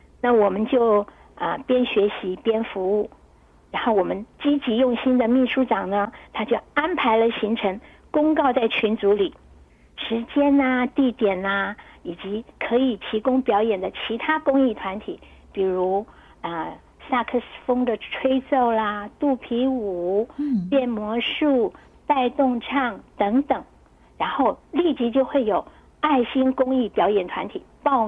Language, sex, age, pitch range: Chinese, female, 60-79, 205-265 Hz